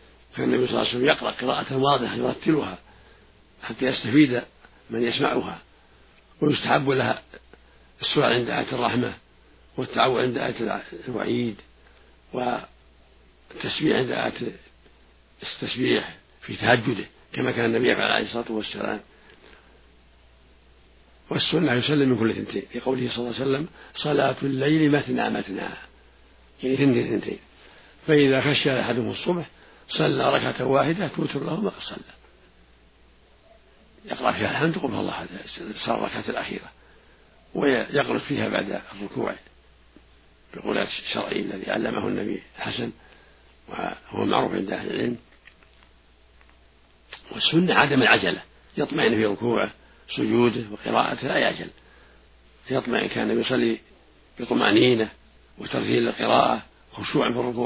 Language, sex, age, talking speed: Arabic, male, 60-79, 110 wpm